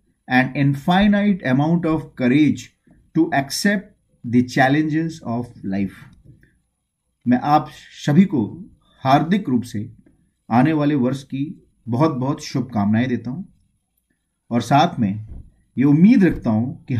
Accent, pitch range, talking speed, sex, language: Indian, 130-170 Hz, 125 wpm, male, English